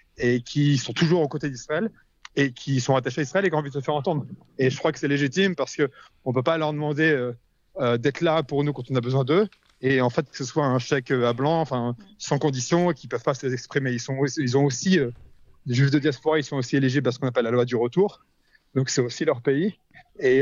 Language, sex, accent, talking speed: French, male, French, 265 wpm